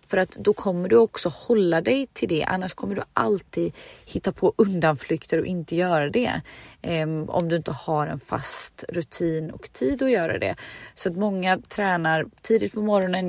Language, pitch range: Swedish, 165-210 Hz